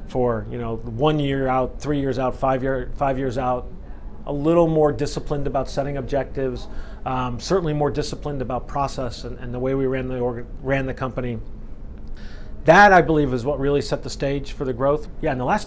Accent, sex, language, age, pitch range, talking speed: American, male, English, 40-59, 120-145 Hz, 205 wpm